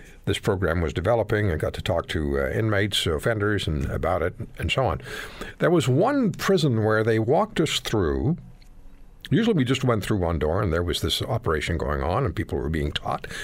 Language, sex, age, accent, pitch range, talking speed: English, male, 60-79, American, 85-125 Hz, 205 wpm